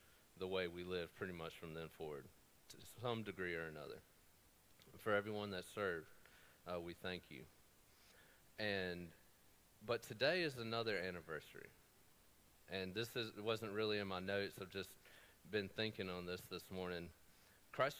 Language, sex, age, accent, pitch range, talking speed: English, male, 30-49, American, 95-120 Hz, 150 wpm